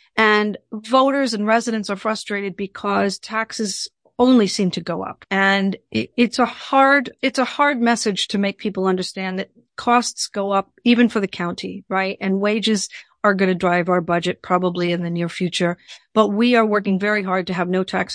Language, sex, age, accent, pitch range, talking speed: English, female, 50-69, American, 185-220 Hz, 190 wpm